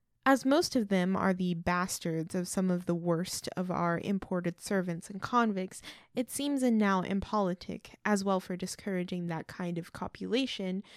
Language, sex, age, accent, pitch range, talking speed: English, female, 20-39, American, 175-210 Hz, 170 wpm